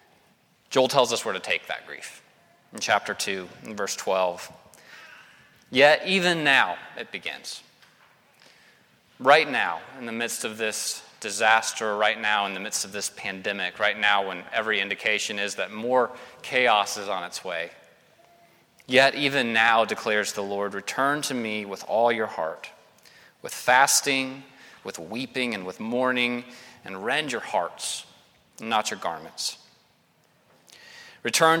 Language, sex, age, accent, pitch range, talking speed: English, male, 30-49, American, 105-130 Hz, 145 wpm